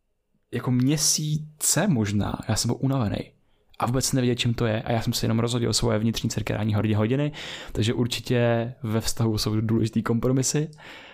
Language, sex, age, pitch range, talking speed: Czech, male, 20-39, 110-125 Hz, 180 wpm